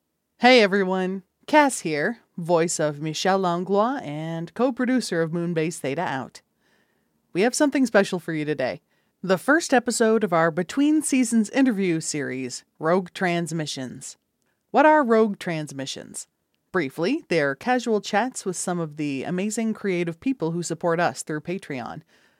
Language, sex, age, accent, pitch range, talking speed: English, female, 30-49, American, 160-230 Hz, 140 wpm